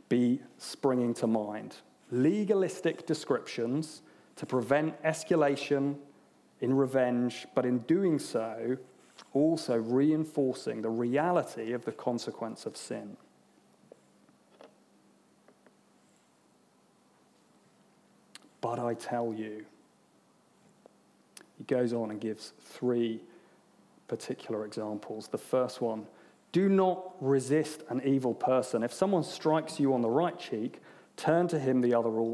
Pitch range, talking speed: 120-160 Hz, 110 wpm